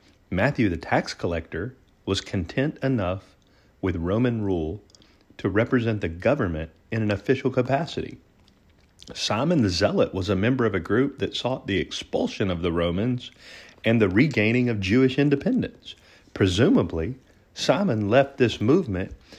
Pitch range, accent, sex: 90-115 Hz, American, male